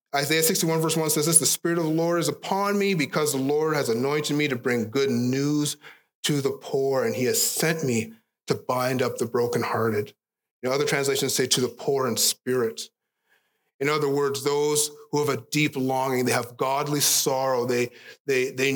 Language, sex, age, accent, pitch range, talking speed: English, male, 30-49, American, 125-160 Hz, 190 wpm